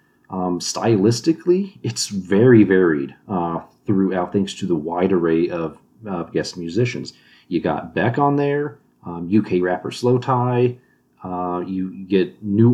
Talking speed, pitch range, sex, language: 140 wpm, 90-120 Hz, male, English